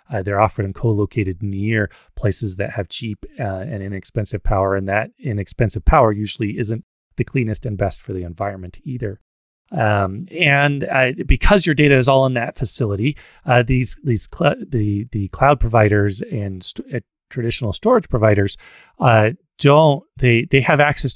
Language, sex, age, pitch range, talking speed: English, male, 30-49, 100-130 Hz, 160 wpm